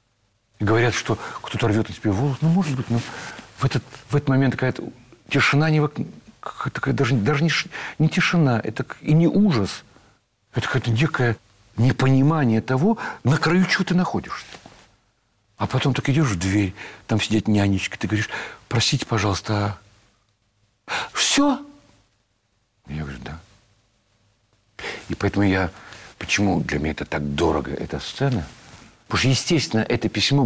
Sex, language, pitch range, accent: male, Russian, 100-135 Hz, native